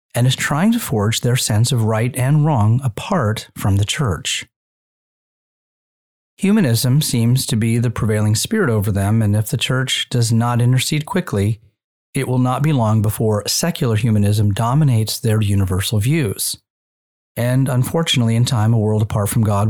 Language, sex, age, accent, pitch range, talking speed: English, male, 40-59, American, 110-135 Hz, 160 wpm